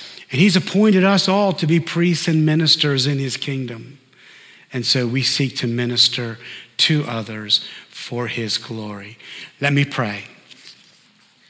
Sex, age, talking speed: male, 50-69, 140 wpm